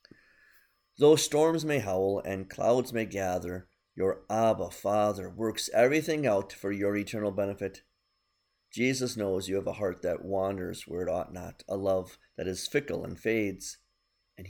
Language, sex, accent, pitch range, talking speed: English, male, American, 100-120 Hz, 155 wpm